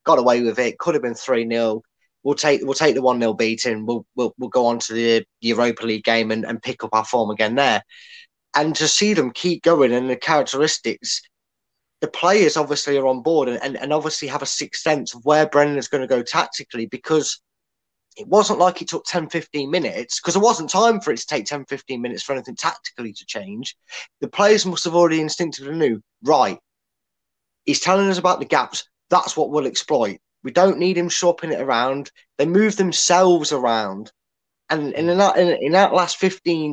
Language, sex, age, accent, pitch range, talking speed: English, male, 20-39, British, 125-175 Hz, 205 wpm